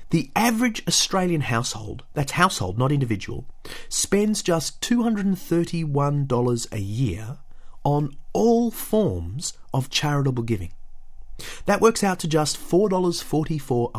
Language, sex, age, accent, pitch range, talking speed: English, male, 30-49, Australian, 110-170 Hz, 105 wpm